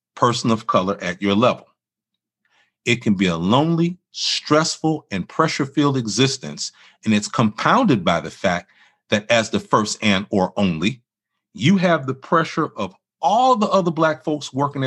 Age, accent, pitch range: 40-59, American, 115-170 Hz